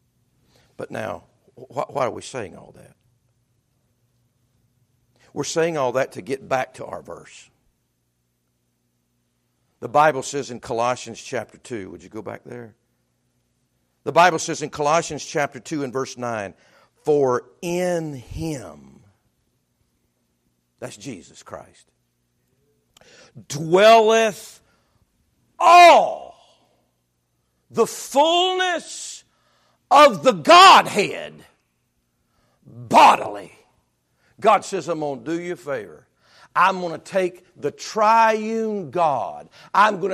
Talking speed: 110 wpm